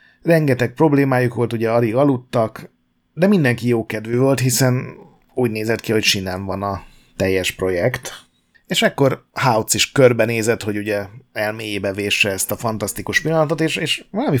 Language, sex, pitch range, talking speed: Hungarian, male, 100-125 Hz, 155 wpm